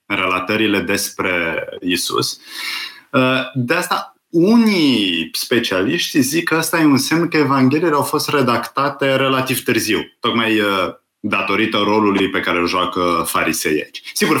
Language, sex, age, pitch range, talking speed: Romanian, male, 30-49, 100-155 Hz, 130 wpm